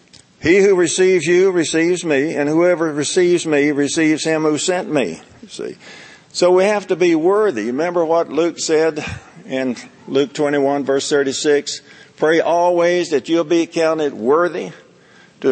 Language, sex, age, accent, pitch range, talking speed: English, male, 50-69, American, 150-190 Hz, 150 wpm